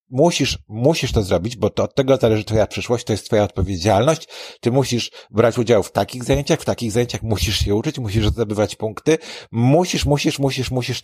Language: Polish